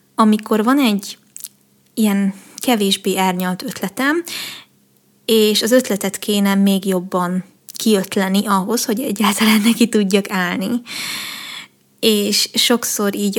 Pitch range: 195-225 Hz